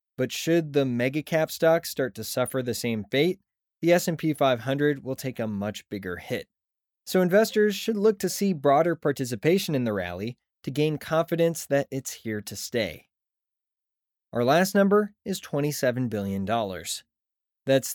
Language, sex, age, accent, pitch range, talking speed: English, male, 20-39, American, 115-155 Hz, 155 wpm